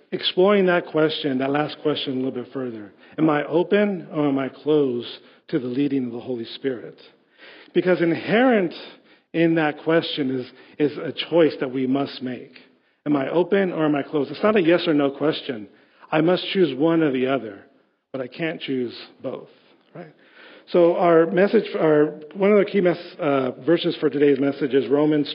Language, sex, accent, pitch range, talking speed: English, male, American, 135-175 Hz, 190 wpm